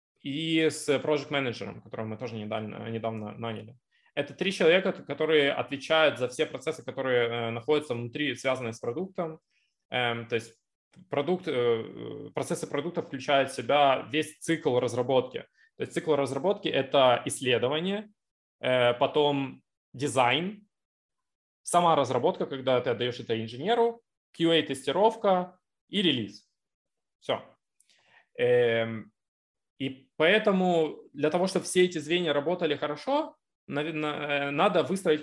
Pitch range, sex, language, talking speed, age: 125-180 Hz, male, Russian, 115 wpm, 20-39